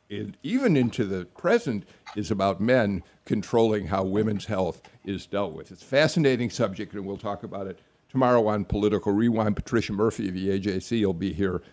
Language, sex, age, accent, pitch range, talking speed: English, male, 50-69, American, 100-145 Hz, 185 wpm